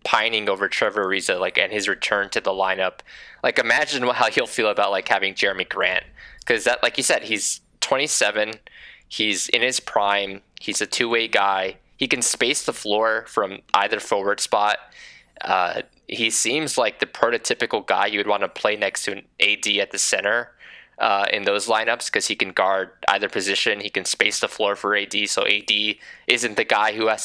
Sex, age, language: male, 20-39, English